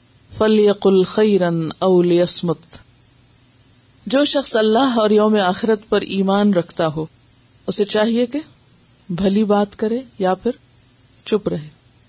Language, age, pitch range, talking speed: Urdu, 50-69, 160-255 Hz, 120 wpm